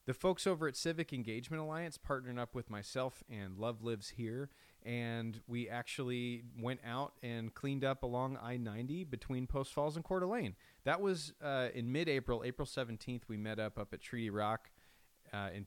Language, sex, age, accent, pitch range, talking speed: English, male, 30-49, American, 105-135 Hz, 180 wpm